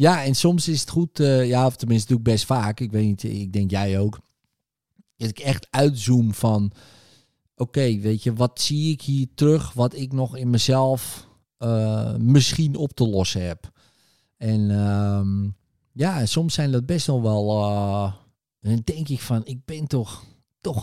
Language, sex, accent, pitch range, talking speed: Dutch, male, Dutch, 110-135 Hz, 185 wpm